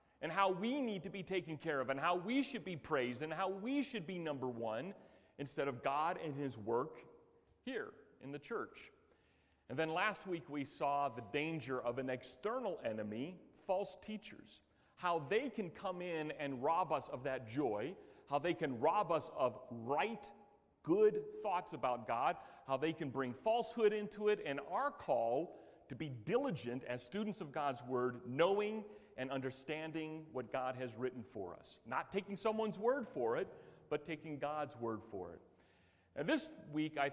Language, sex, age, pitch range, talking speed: English, male, 40-59, 135-190 Hz, 180 wpm